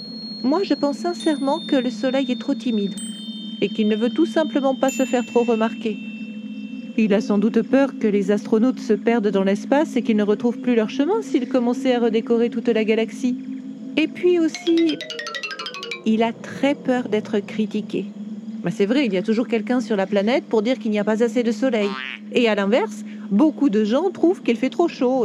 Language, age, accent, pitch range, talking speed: French, 40-59, French, 210-250 Hz, 205 wpm